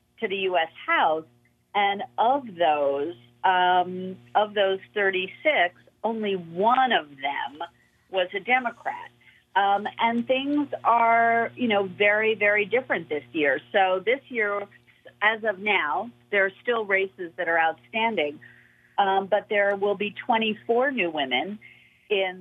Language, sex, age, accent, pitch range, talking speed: English, female, 50-69, American, 170-225 Hz, 135 wpm